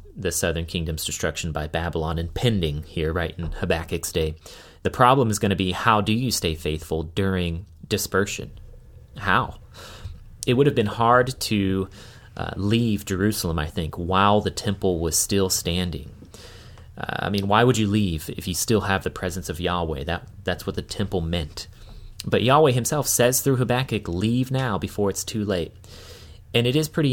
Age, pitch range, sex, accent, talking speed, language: 30-49, 90-110 Hz, male, American, 175 wpm, English